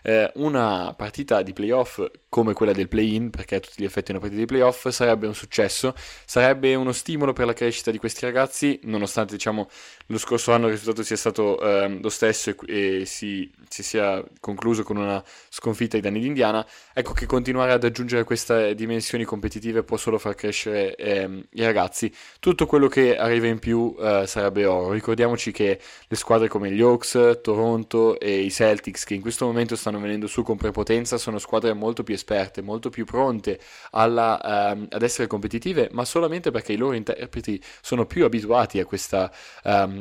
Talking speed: 185 wpm